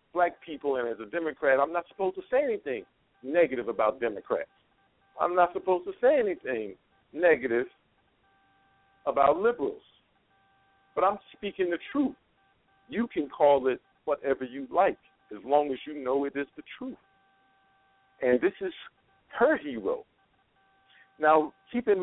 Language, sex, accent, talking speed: English, male, American, 145 wpm